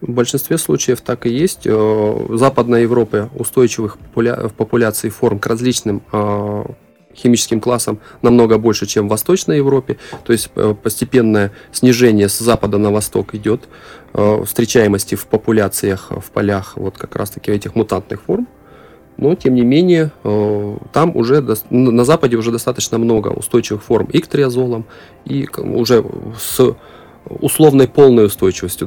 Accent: native